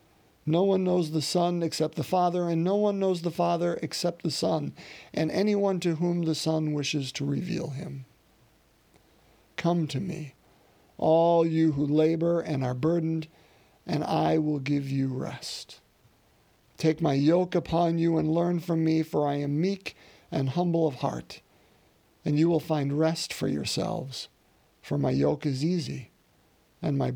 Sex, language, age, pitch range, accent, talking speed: male, English, 50-69, 140-170 Hz, American, 165 wpm